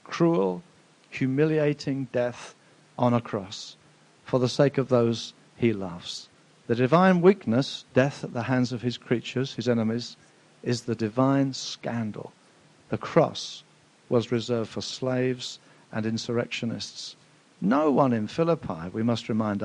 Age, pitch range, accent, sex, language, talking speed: 50-69, 120-170 Hz, British, male, English, 135 wpm